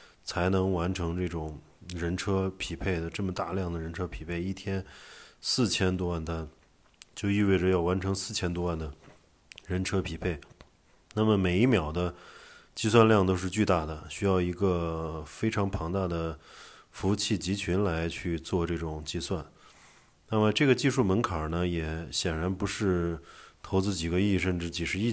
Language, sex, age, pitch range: Chinese, male, 20-39, 85-105 Hz